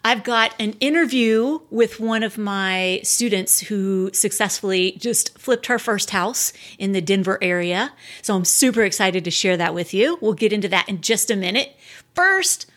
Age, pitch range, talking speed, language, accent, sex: 30-49, 195-250 Hz, 180 wpm, English, American, female